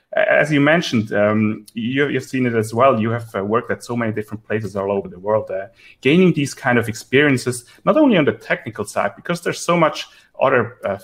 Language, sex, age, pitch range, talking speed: English, male, 30-49, 105-140 Hz, 225 wpm